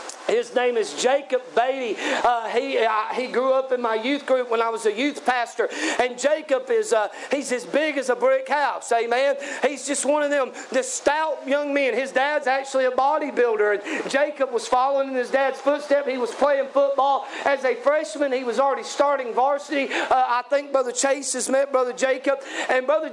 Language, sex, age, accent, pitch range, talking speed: English, male, 40-59, American, 255-295 Hz, 195 wpm